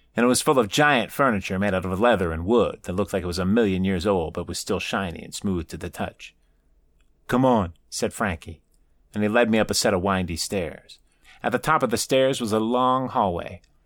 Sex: male